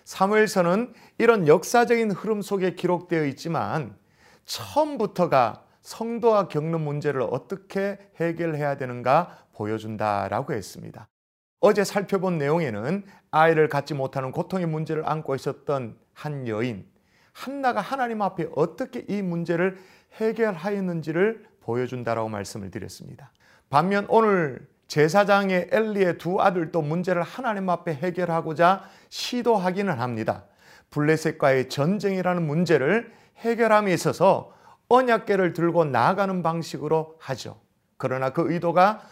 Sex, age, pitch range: male, 30-49, 150-205 Hz